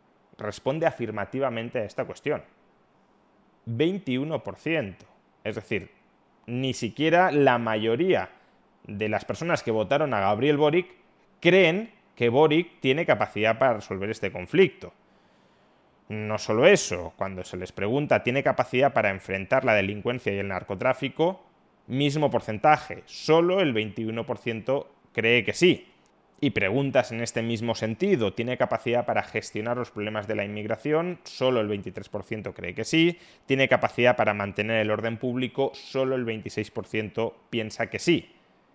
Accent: Spanish